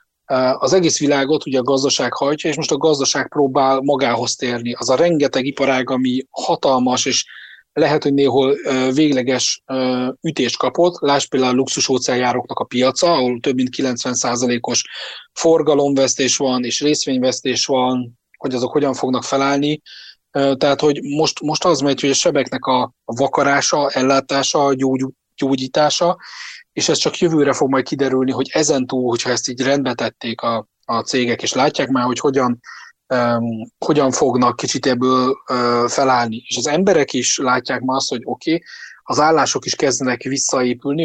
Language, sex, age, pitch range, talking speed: Hungarian, male, 30-49, 125-140 Hz, 150 wpm